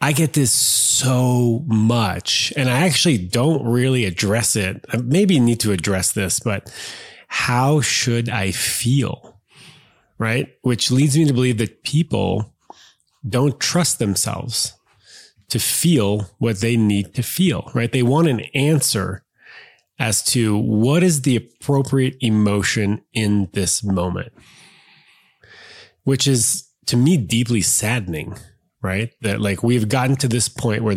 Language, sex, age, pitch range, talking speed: English, male, 30-49, 105-140 Hz, 140 wpm